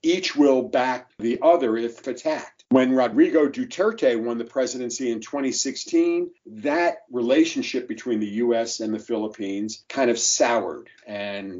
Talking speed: 140 wpm